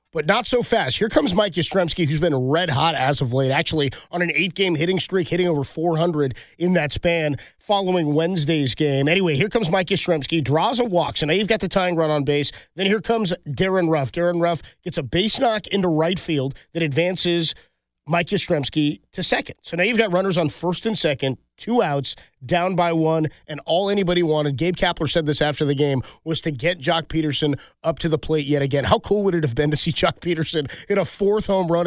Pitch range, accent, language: 150-185 Hz, American, English